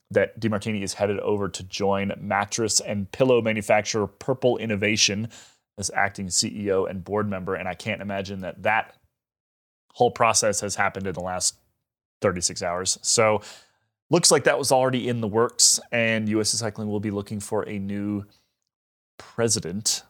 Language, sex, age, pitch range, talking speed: English, male, 30-49, 100-125 Hz, 160 wpm